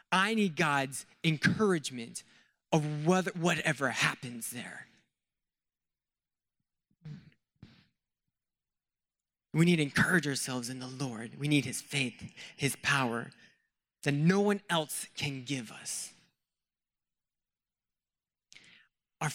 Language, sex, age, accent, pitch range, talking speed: English, male, 20-39, American, 135-185 Hz, 95 wpm